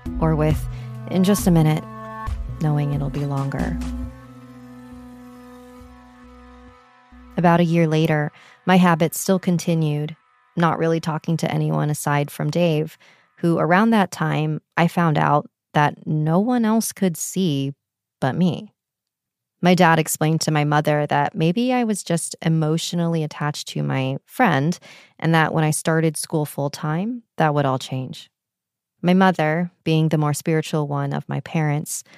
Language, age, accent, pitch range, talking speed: English, 30-49, American, 140-175 Hz, 145 wpm